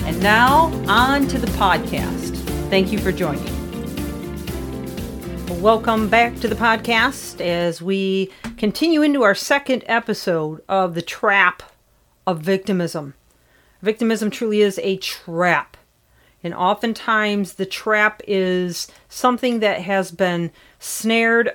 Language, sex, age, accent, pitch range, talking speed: English, female, 40-59, American, 185-215 Hz, 115 wpm